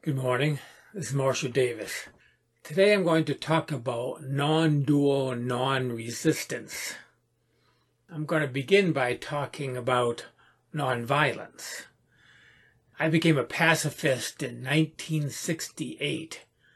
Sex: male